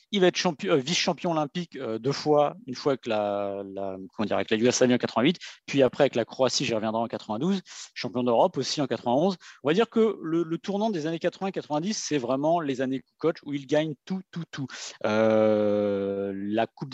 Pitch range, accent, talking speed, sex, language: 125-175 Hz, French, 200 wpm, male, French